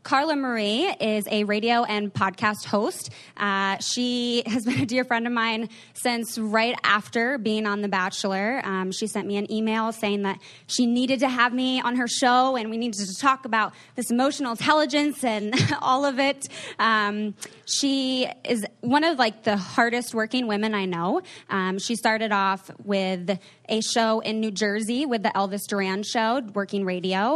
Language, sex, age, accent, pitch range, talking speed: English, female, 20-39, American, 200-250 Hz, 180 wpm